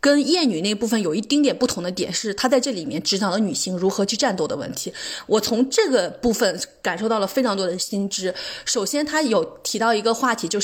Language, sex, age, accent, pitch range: Chinese, female, 20-39, native, 215-300 Hz